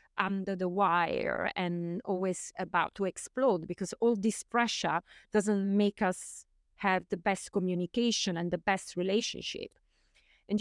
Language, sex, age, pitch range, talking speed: English, female, 30-49, 175-205 Hz, 135 wpm